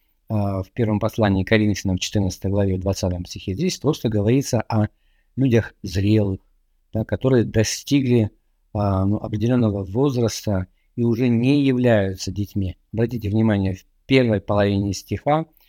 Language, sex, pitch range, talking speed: Russian, male, 100-125 Hz, 120 wpm